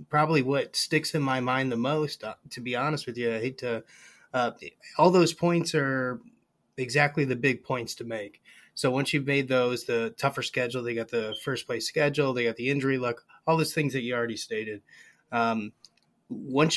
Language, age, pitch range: English, 30-49, 115-140 Hz